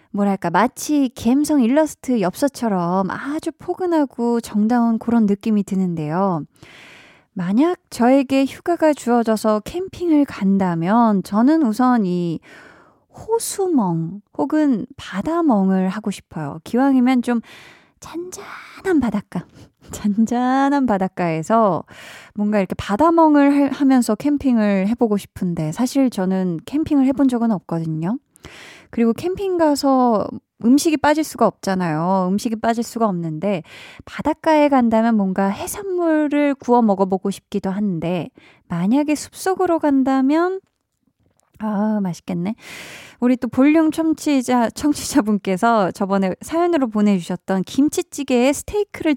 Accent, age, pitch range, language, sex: native, 20-39, 195-285 Hz, Korean, female